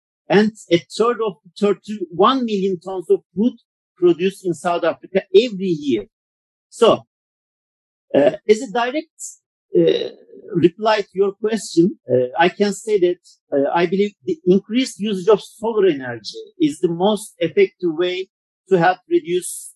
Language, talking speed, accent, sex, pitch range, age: English, 145 wpm, Turkish, male, 180-240 Hz, 50-69